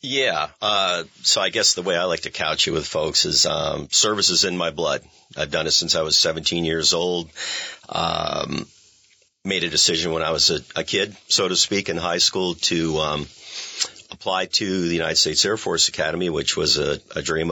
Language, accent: English, American